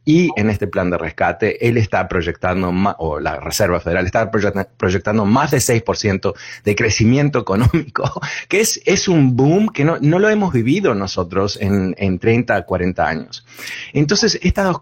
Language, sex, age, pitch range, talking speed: Spanish, male, 30-49, 95-145 Hz, 175 wpm